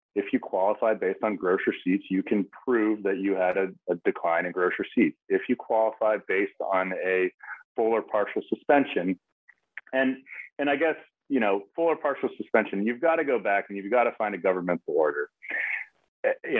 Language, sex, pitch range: English, male, 95-125 Hz